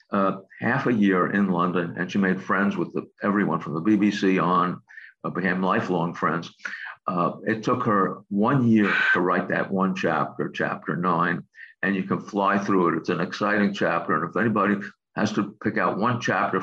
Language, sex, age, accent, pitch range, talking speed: English, male, 50-69, American, 90-105 Hz, 190 wpm